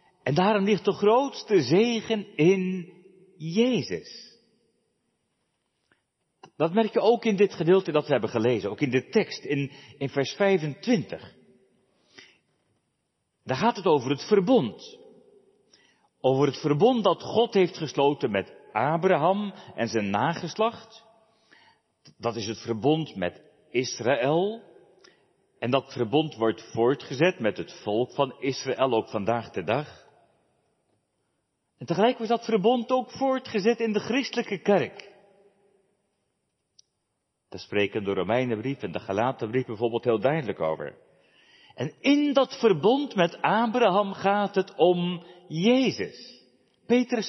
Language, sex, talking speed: Dutch, male, 125 wpm